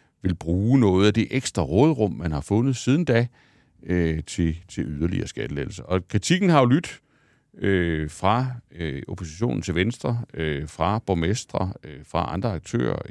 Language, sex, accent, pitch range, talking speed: Danish, male, native, 85-120 Hz, 160 wpm